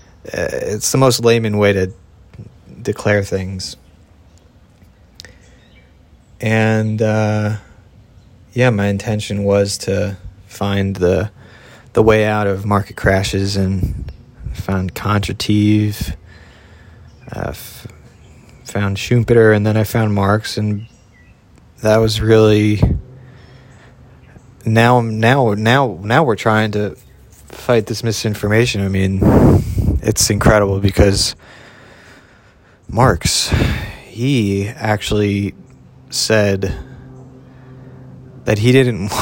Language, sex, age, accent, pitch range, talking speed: English, male, 30-49, American, 100-115 Hz, 95 wpm